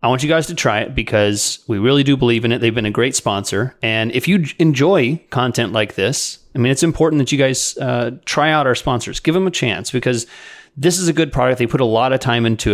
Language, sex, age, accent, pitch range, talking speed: English, male, 30-49, American, 115-145 Hz, 260 wpm